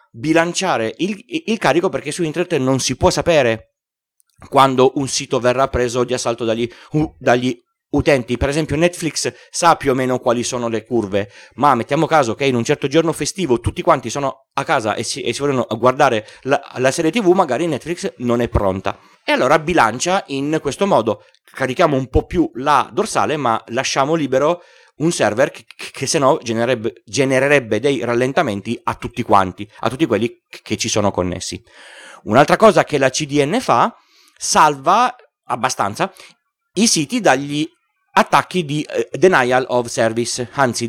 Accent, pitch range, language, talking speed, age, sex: native, 120-165 Hz, Italian, 165 wpm, 30-49, male